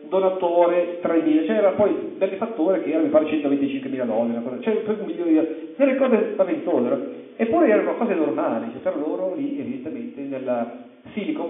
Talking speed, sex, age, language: 175 wpm, male, 40-59, Italian